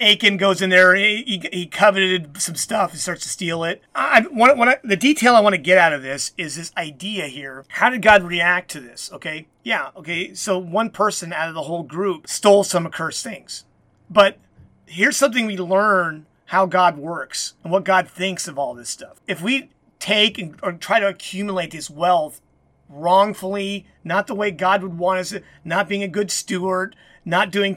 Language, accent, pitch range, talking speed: English, American, 170-205 Hz, 205 wpm